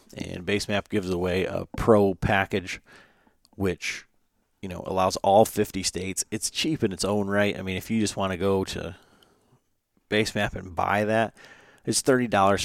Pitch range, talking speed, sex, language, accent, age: 90-105 Hz, 160 wpm, male, English, American, 30-49